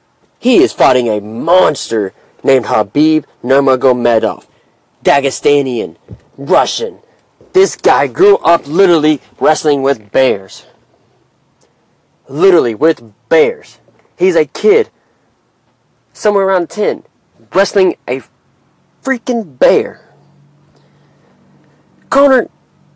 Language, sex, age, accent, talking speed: English, male, 30-49, American, 85 wpm